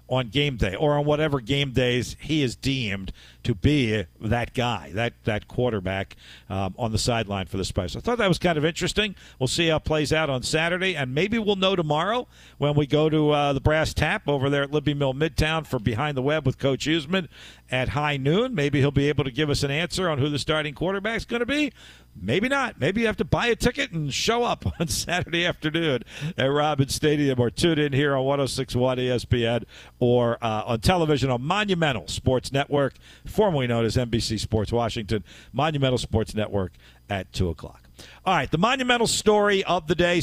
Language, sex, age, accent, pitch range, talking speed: English, male, 50-69, American, 120-165 Hz, 210 wpm